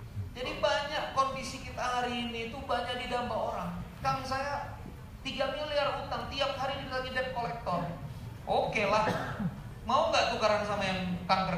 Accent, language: native, Indonesian